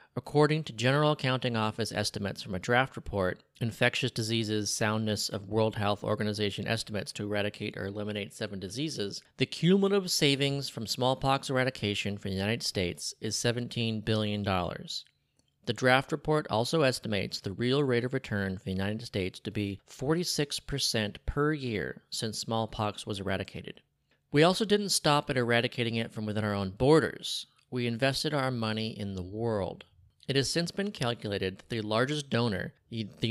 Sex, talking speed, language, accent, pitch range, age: male, 160 wpm, English, American, 105-135 Hz, 30-49